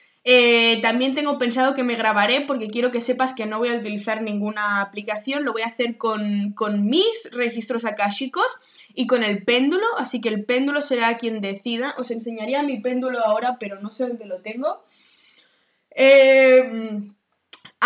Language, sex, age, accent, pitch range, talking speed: Spanish, female, 10-29, Spanish, 220-260 Hz, 170 wpm